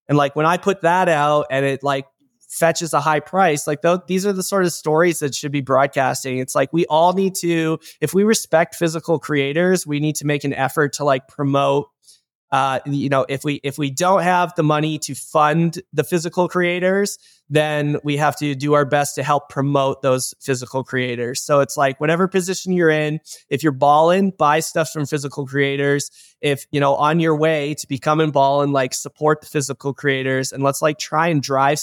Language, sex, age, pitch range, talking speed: English, male, 20-39, 135-160 Hz, 205 wpm